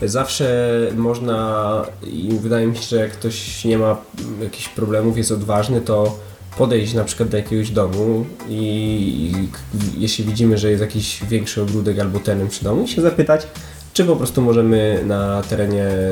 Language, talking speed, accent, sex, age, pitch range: Polish, 165 wpm, native, male, 20-39, 100-115 Hz